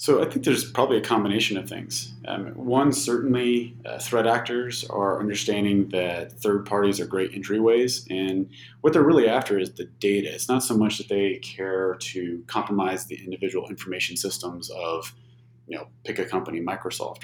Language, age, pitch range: English, 30-49, 95-115 Hz